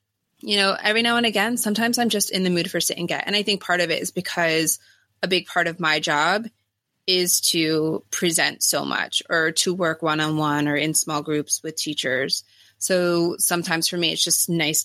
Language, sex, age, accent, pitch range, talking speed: English, female, 20-39, American, 150-175 Hz, 210 wpm